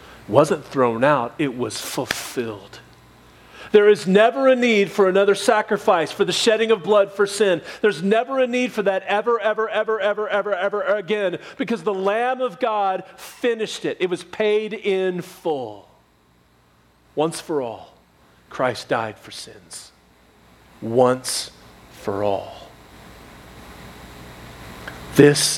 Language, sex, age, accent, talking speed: English, male, 40-59, American, 135 wpm